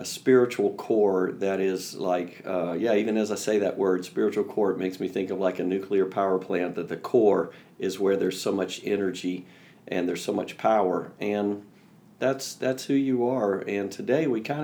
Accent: American